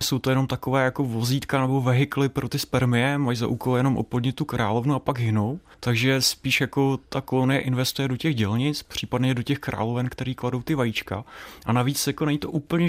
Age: 20-39